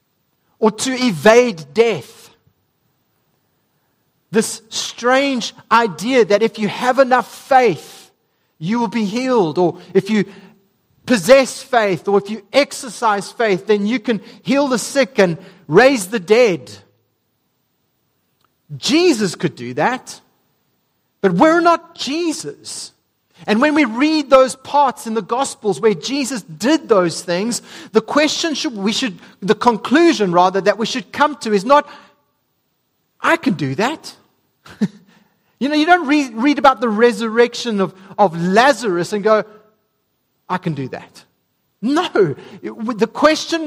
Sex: male